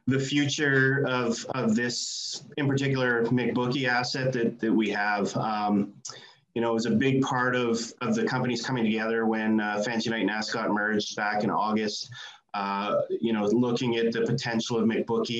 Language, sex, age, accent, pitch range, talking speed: English, male, 30-49, American, 110-130 Hz, 170 wpm